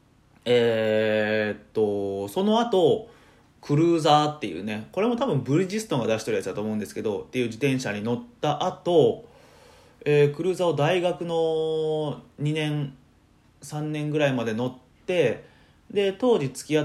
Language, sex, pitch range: Japanese, male, 115-155 Hz